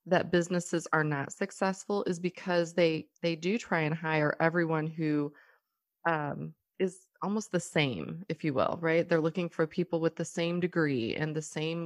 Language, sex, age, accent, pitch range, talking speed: English, female, 30-49, American, 160-200 Hz, 175 wpm